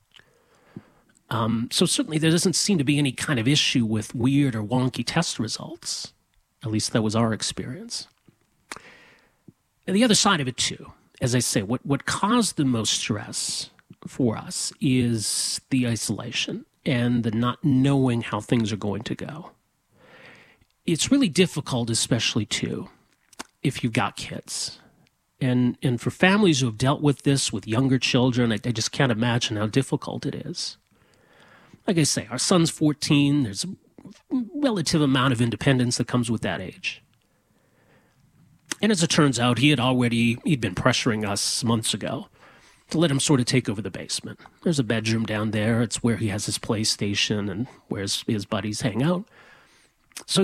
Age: 40-59